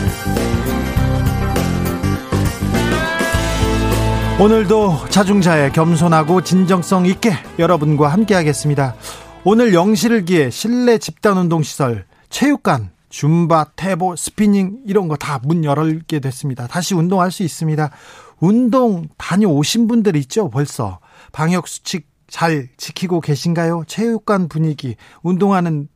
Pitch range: 140-190 Hz